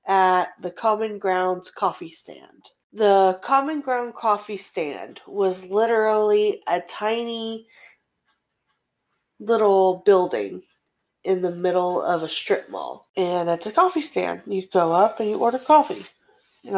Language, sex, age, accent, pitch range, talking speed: English, female, 30-49, American, 180-230 Hz, 130 wpm